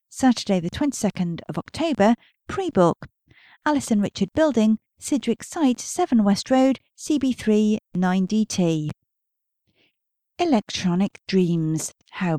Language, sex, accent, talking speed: English, female, British, 95 wpm